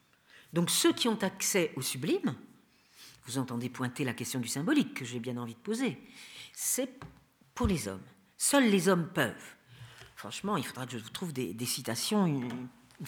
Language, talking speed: French, 180 wpm